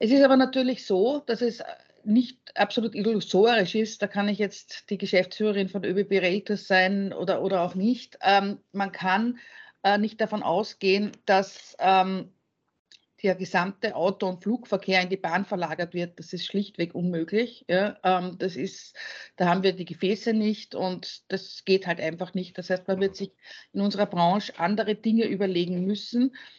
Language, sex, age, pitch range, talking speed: German, female, 50-69, 190-220 Hz, 165 wpm